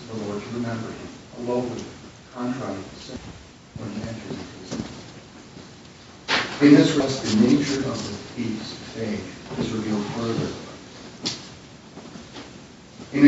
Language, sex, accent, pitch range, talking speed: English, male, American, 115-140 Hz, 120 wpm